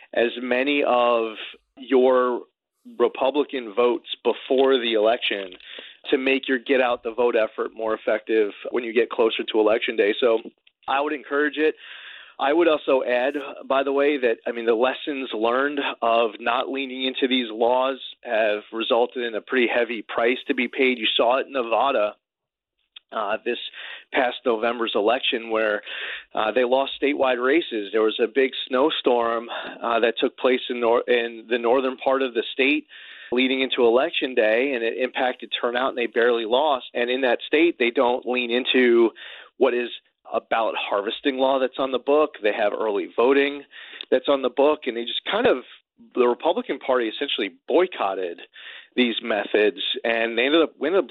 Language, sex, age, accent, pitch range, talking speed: English, male, 30-49, American, 120-145 Hz, 175 wpm